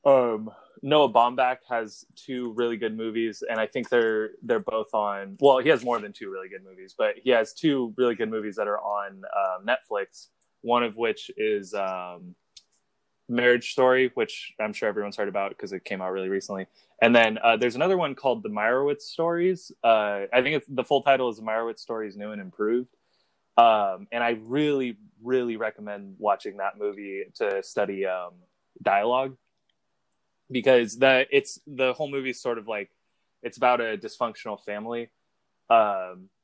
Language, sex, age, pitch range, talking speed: English, male, 20-39, 100-130 Hz, 175 wpm